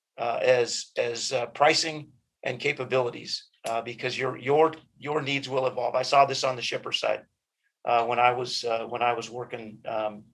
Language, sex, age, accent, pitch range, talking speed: English, male, 40-59, American, 125-145 Hz, 185 wpm